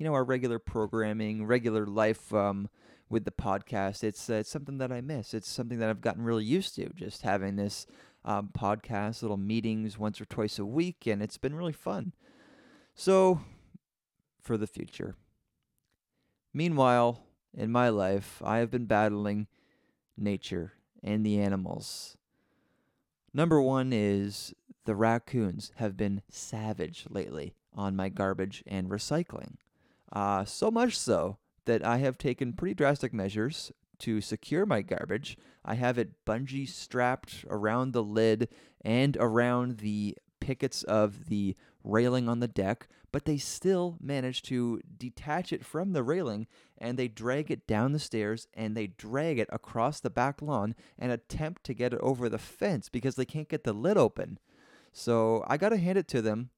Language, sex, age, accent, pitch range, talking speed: English, male, 30-49, American, 105-130 Hz, 165 wpm